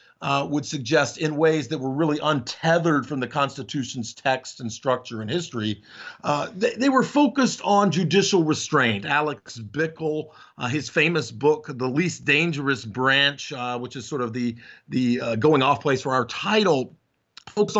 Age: 50-69